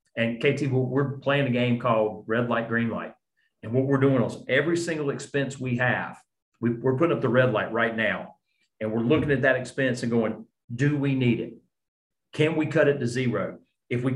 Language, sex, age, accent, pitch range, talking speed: English, male, 40-59, American, 115-145 Hz, 210 wpm